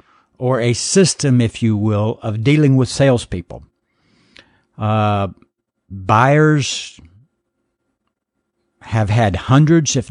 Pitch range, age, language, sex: 110-140 Hz, 60-79, English, male